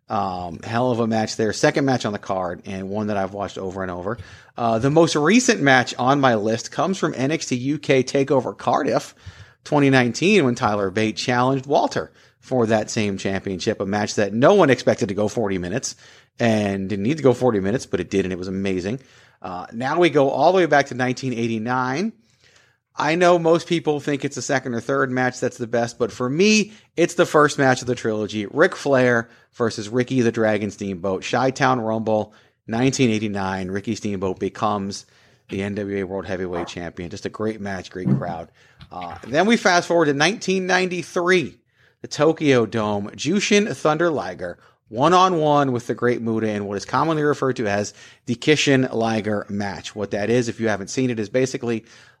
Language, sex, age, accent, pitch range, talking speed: English, male, 30-49, American, 105-140 Hz, 190 wpm